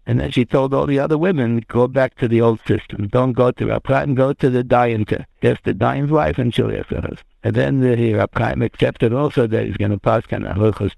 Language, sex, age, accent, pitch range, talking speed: English, male, 60-79, American, 110-130 Hz, 245 wpm